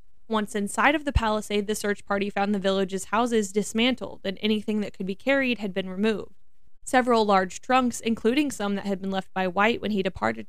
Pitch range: 195-245 Hz